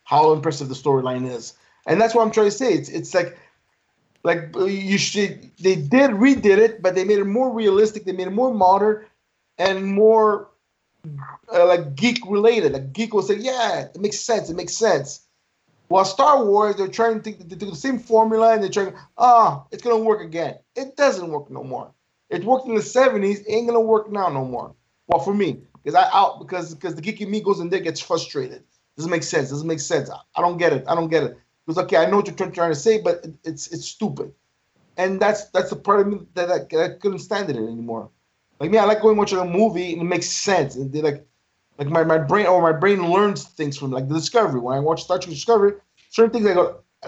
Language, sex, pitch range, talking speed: English, male, 165-215 Hz, 235 wpm